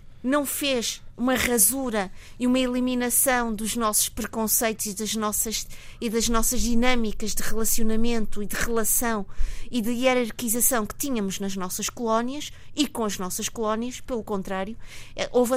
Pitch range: 210-245 Hz